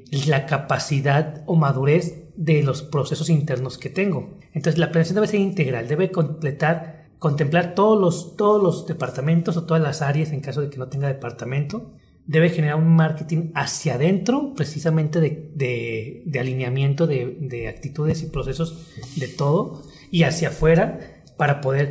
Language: Spanish